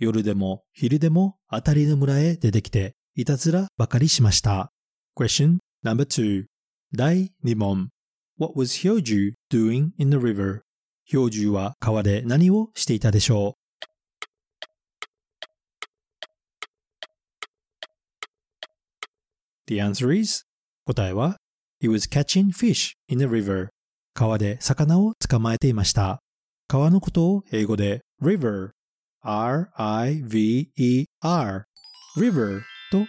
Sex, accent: male, native